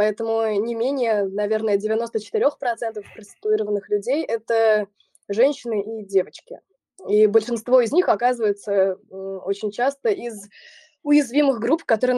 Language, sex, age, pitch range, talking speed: Russian, female, 20-39, 210-255 Hz, 110 wpm